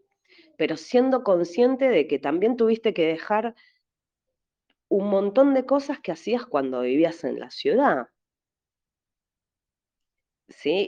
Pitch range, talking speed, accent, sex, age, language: 150-245 Hz, 115 wpm, Argentinian, female, 30-49, Spanish